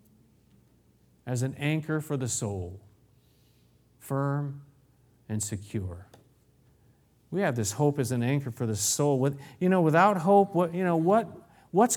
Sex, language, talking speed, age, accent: male, English, 120 wpm, 50-69, American